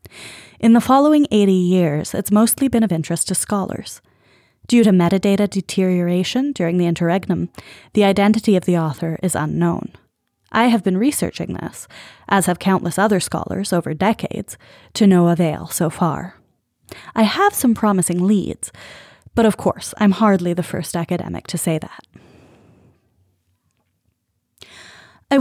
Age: 20-39